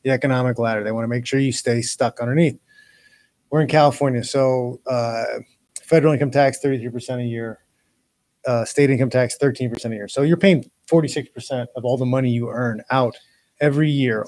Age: 30-49